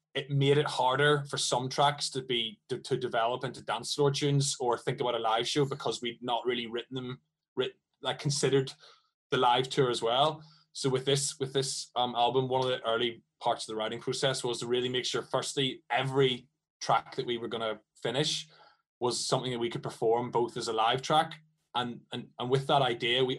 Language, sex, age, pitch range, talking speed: English, male, 20-39, 120-140 Hz, 215 wpm